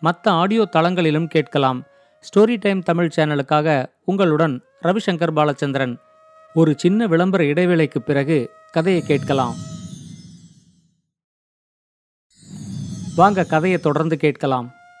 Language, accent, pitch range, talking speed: Tamil, native, 160-210 Hz, 75 wpm